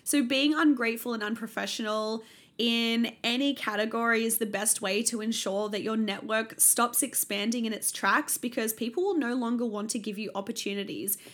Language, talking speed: English, 170 wpm